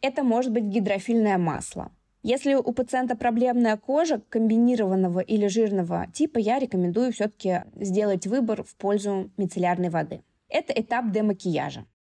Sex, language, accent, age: female, Russian, native, 20-39